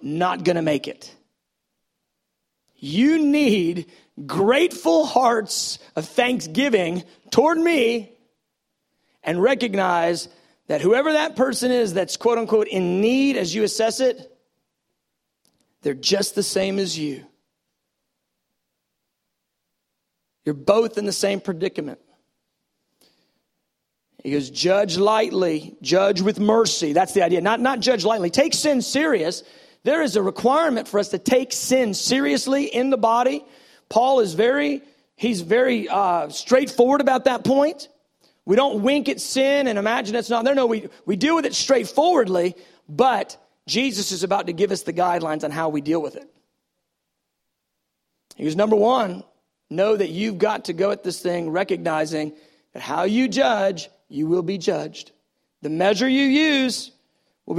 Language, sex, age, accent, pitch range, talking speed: English, male, 40-59, American, 180-255 Hz, 145 wpm